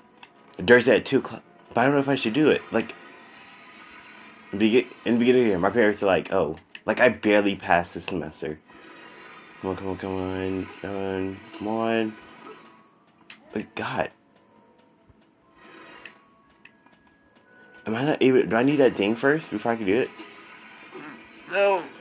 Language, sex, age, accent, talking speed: English, male, 30-49, American, 160 wpm